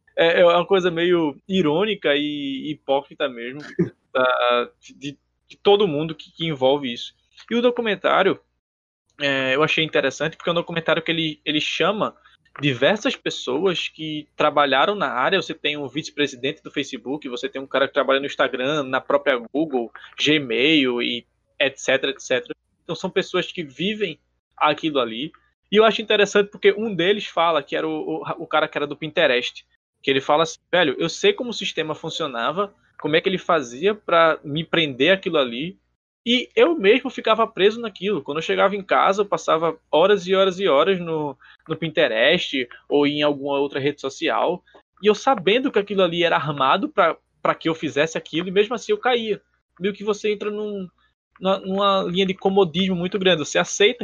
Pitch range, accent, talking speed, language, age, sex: 145-200 Hz, Brazilian, 175 wpm, Portuguese, 20-39, male